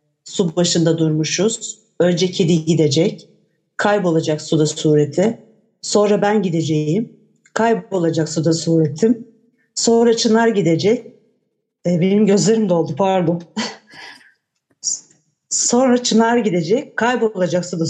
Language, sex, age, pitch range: Turkish, female, 60-79, 175-230 Hz